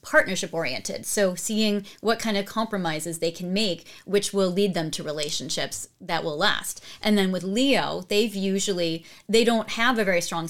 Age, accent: 30-49, American